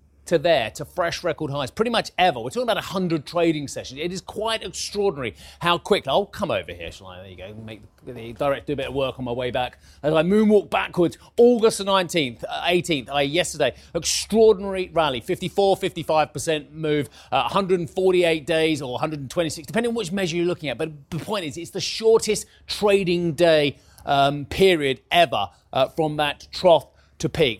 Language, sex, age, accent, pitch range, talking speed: English, male, 30-49, British, 135-180 Hz, 190 wpm